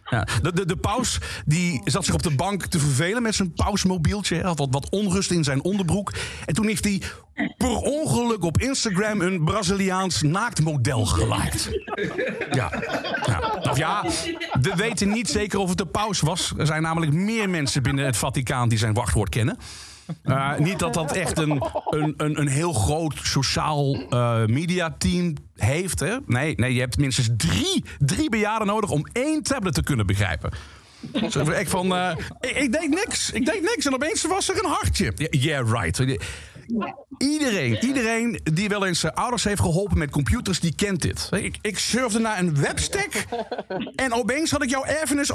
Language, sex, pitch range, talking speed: Dutch, male, 140-225 Hz, 175 wpm